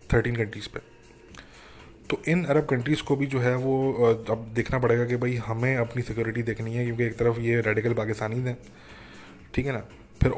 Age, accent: 20-39, Indian